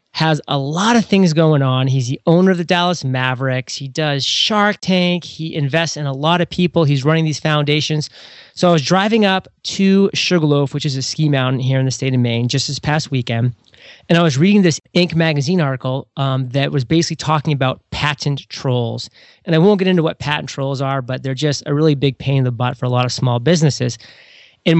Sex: male